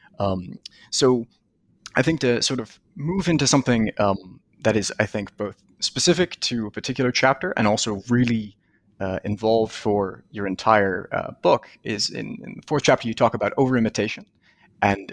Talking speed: 170 wpm